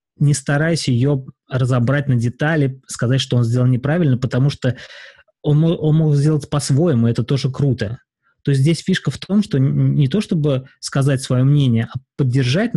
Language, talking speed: Russian, 170 wpm